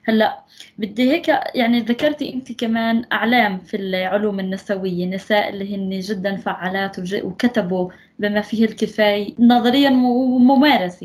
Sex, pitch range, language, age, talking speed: female, 190-235 Hz, English, 20-39, 120 wpm